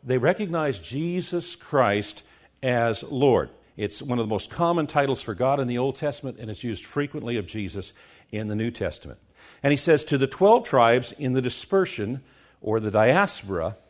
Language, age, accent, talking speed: English, 50-69, American, 180 wpm